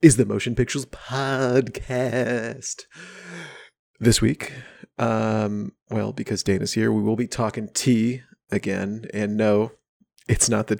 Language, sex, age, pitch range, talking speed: English, male, 30-49, 100-120 Hz, 130 wpm